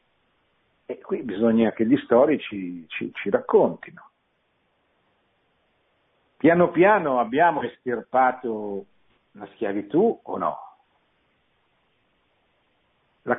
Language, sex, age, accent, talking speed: Italian, male, 50-69, native, 80 wpm